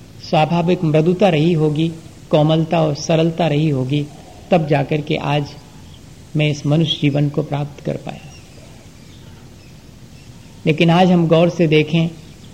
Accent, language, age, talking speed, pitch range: native, Hindi, 50-69, 130 wpm, 150-175 Hz